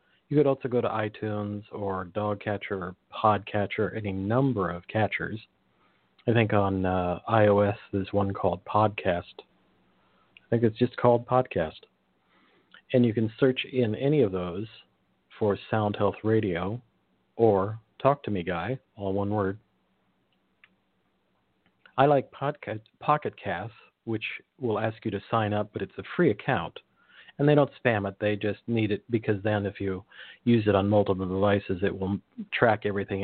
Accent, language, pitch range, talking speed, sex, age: American, English, 100-115 Hz, 160 wpm, male, 50-69